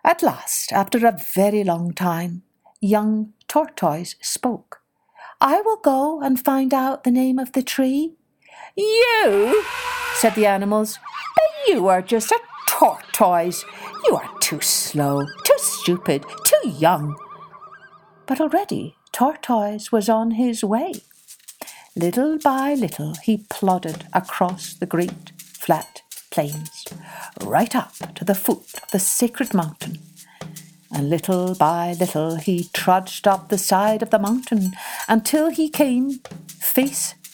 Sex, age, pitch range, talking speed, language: female, 60-79, 175-265 Hz, 130 wpm, English